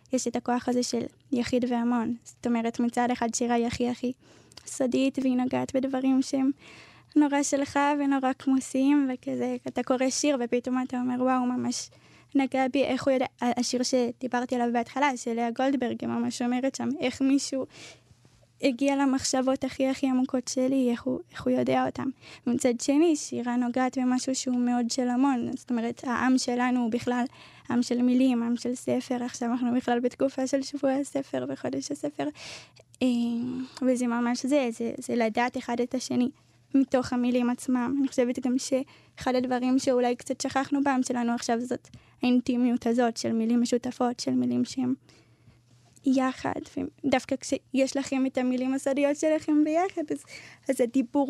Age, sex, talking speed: 10-29, female, 160 wpm